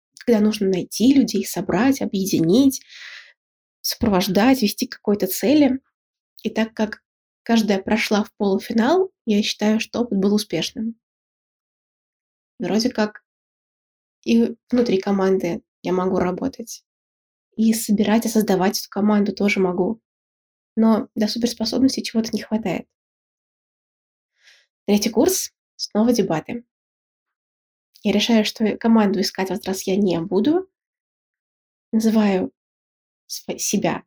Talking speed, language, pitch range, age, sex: 110 wpm, Russian, 200-240 Hz, 20-39, female